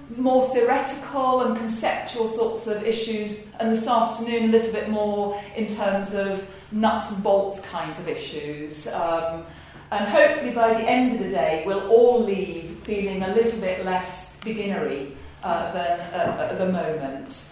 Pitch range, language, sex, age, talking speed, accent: 195-235 Hz, English, female, 40-59, 160 wpm, British